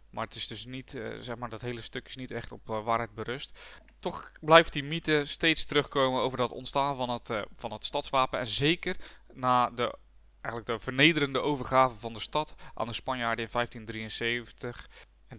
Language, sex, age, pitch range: Dutch, male, 20-39, 115-145 Hz